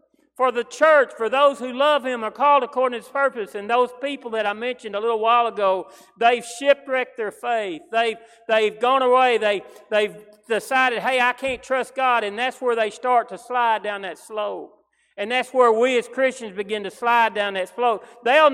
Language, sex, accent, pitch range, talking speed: English, male, American, 215-265 Hz, 205 wpm